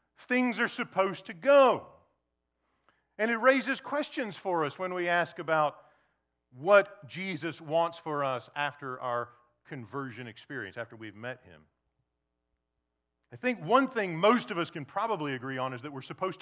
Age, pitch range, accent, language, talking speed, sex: 40-59, 95-160 Hz, American, English, 155 wpm, male